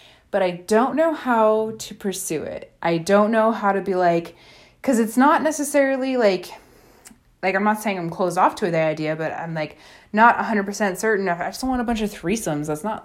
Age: 20-39